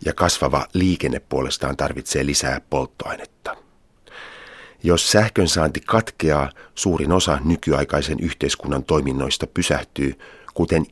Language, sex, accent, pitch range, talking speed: Finnish, male, native, 70-90 Hz, 100 wpm